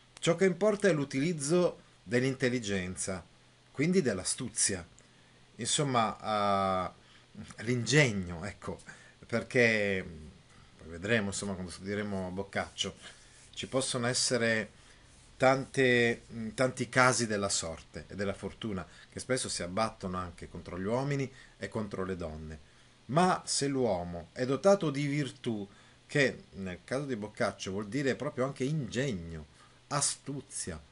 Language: Italian